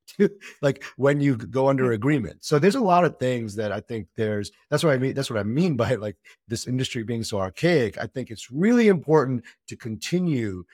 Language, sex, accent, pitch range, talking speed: English, male, American, 100-140 Hz, 210 wpm